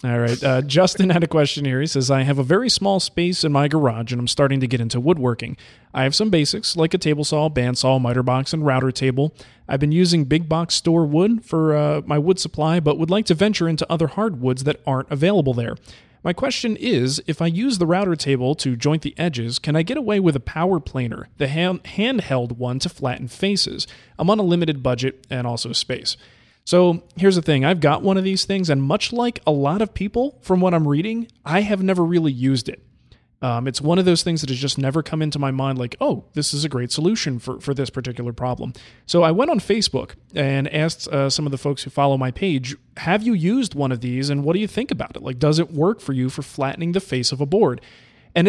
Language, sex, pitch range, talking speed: English, male, 130-180 Hz, 240 wpm